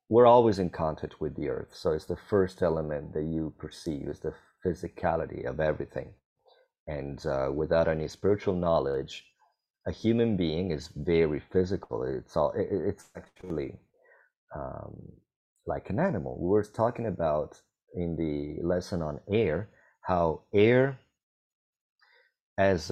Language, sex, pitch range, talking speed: English, male, 75-95 Hz, 135 wpm